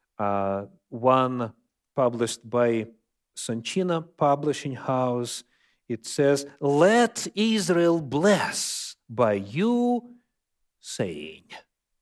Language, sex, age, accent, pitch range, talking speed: Russian, male, 40-59, native, 120-180 Hz, 75 wpm